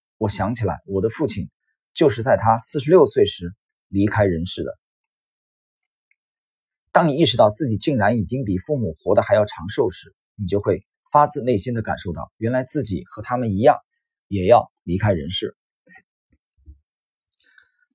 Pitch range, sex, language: 95-130 Hz, male, Chinese